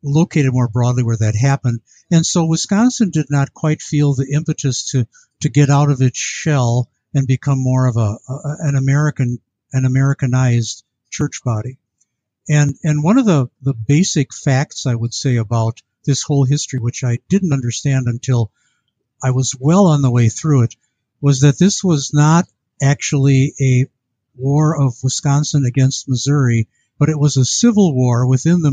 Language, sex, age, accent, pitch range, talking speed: English, male, 50-69, American, 125-155 Hz, 170 wpm